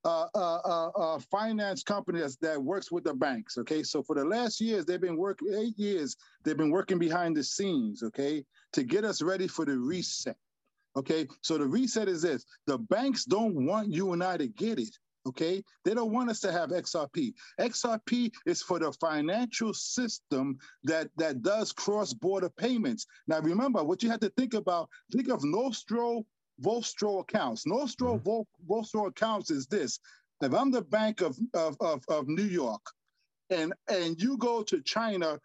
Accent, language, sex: American, English, male